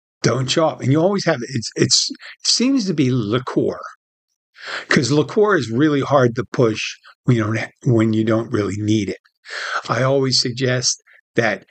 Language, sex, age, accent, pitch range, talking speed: English, male, 50-69, American, 115-155 Hz, 180 wpm